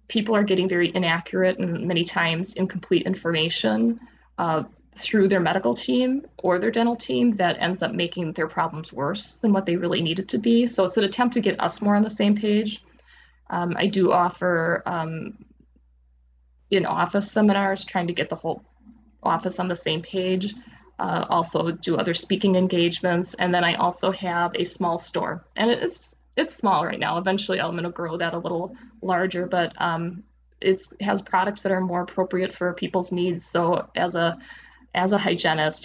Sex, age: female, 20-39